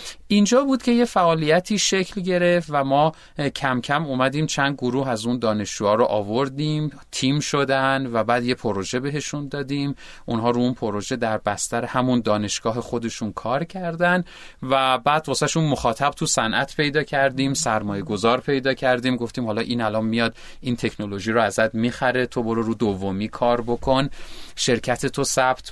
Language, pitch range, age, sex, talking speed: Persian, 110-145 Hz, 30-49, male, 165 wpm